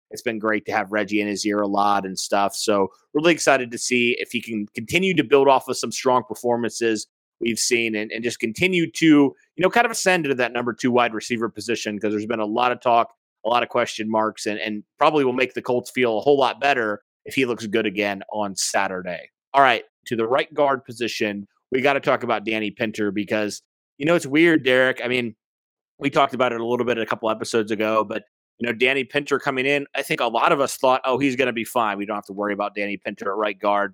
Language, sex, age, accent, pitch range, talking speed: English, male, 30-49, American, 110-135 Hz, 255 wpm